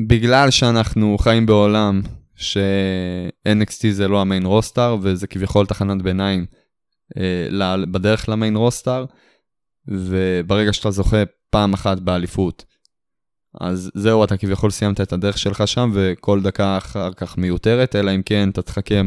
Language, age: Hebrew, 20-39